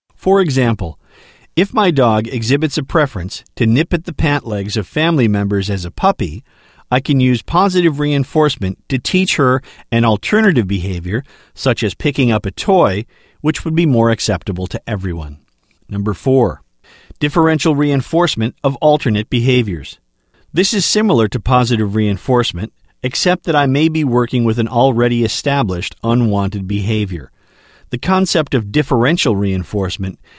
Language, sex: English, male